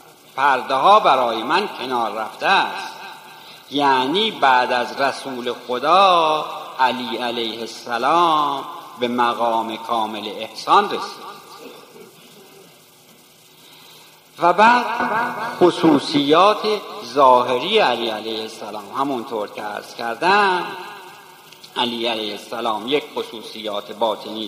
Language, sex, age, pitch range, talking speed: Persian, male, 50-69, 120-165 Hz, 90 wpm